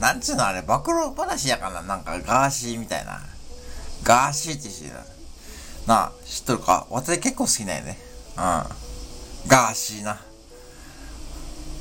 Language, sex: Japanese, male